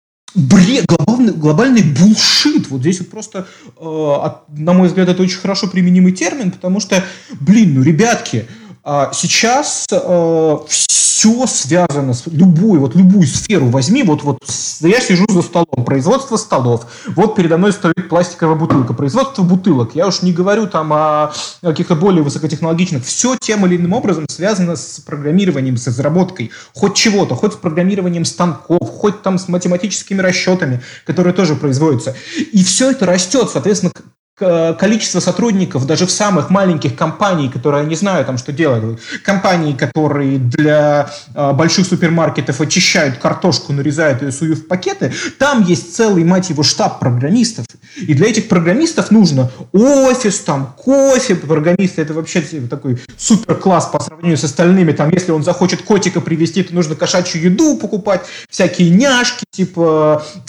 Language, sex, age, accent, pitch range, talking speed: Russian, male, 30-49, native, 155-195 Hz, 150 wpm